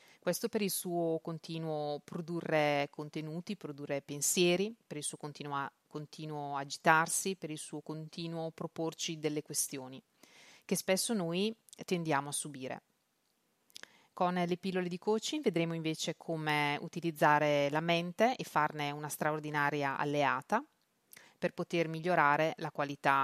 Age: 30-49